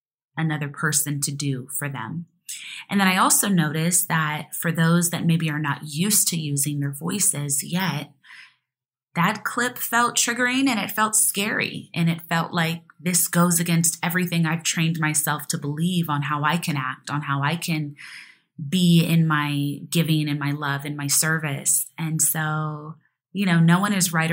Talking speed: 180 wpm